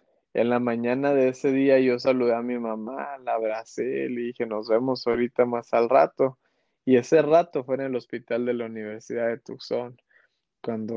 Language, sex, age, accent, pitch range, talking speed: Spanish, male, 20-39, Mexican, 115-135 Hz, 185 wpm